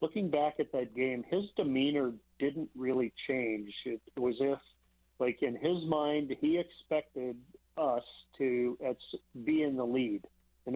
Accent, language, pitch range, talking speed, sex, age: American, English, 125-150 Hz, 145 wpm, male, 50-69